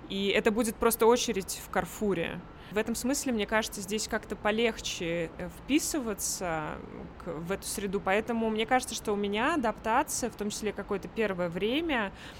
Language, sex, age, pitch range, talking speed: Russian, female, 20-39, 185-230 Hz, 155 wpm